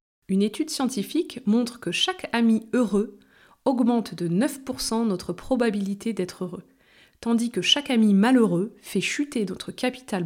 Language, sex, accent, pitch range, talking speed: French, female, French, 190-270 Hz, 140 wpm